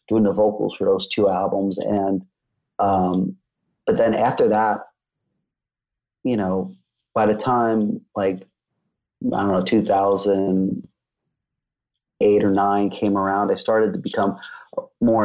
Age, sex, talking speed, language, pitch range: 30-49, male, 125 wpm, English, 100-120 Hz